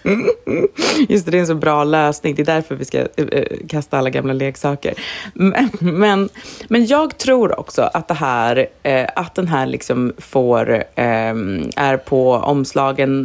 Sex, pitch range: female, 130-170 Hz